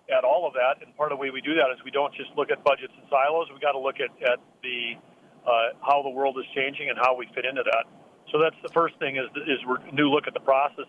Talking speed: 290 wpm